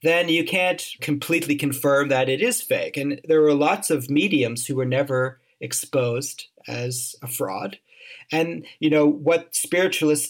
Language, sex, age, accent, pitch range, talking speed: English, male, 40-59, American, 135-165 Hz, 155 wpm